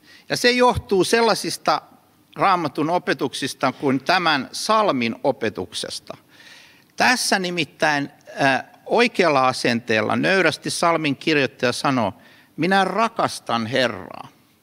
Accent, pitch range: native, 140-225 Hz